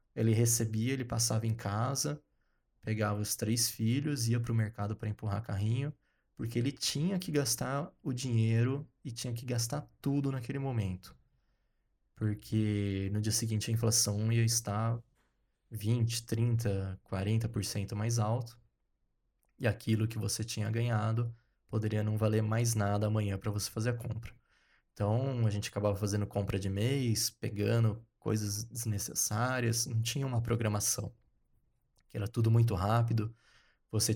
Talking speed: 140 wpm